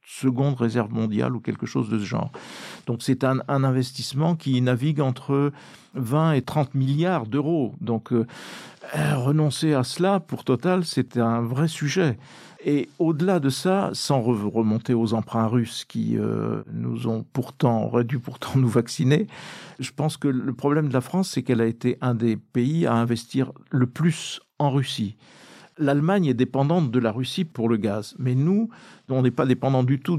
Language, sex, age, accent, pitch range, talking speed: French, male, 50-69, French, 120-150 Hz, 180 wpm